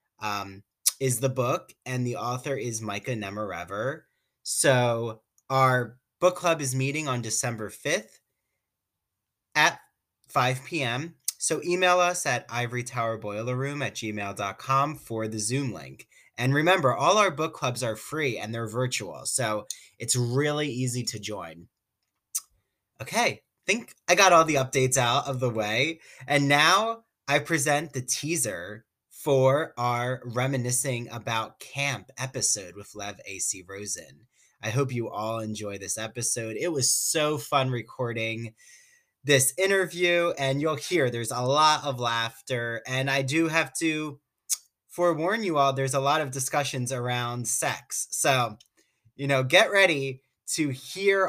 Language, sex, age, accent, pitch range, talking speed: English, male, 20-39, American, 115-145 Hz, 140 wpm